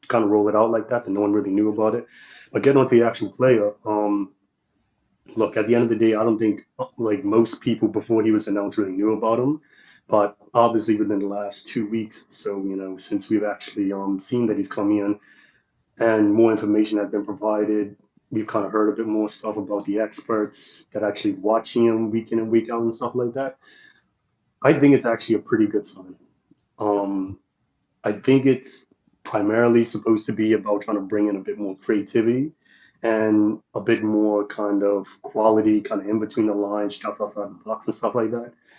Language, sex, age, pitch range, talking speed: English, male, 30-49, 105-115 Hz, 210 wpm